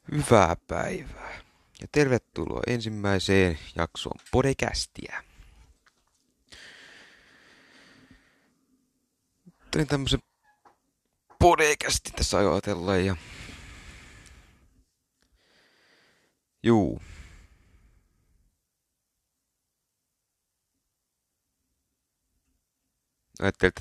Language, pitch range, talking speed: Finnish, 80-95 Hz, 40 wpm